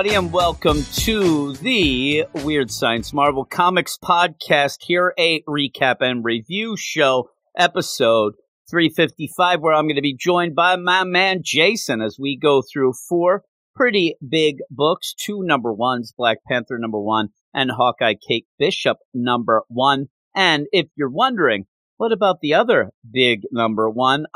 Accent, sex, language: American, male, English